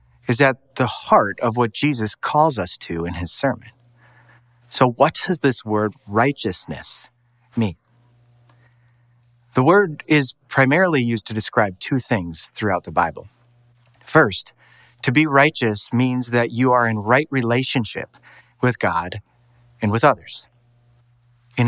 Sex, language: male, English